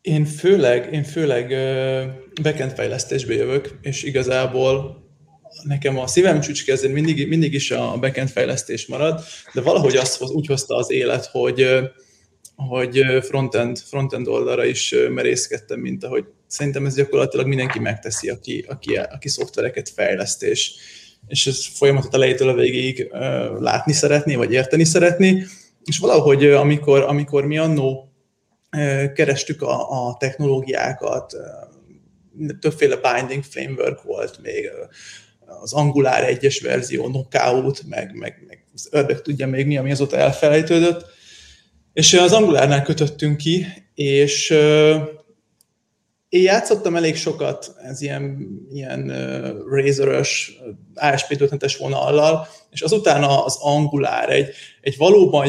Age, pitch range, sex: 20-39, 135-155 Hz, male